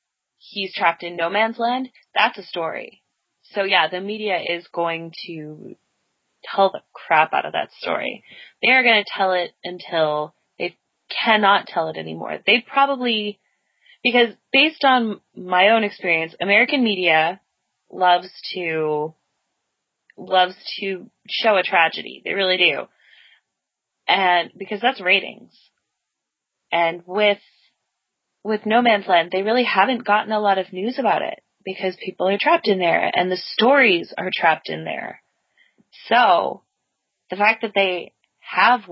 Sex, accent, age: female, American, 20-39